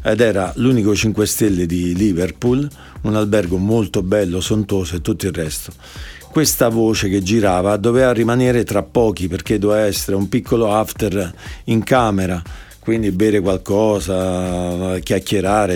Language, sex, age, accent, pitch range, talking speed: Spanish, male, 50-69, Italian, 95-115 Hz, 135 wpm